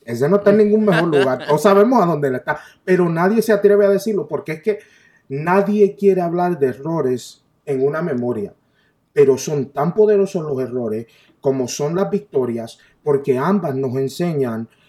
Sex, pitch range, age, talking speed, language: male, 135-200 Hz, 30-49, 175 wpm, Spanish